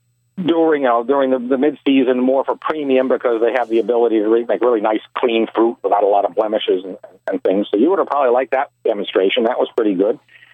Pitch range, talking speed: 120-155 Hz, 240 wpm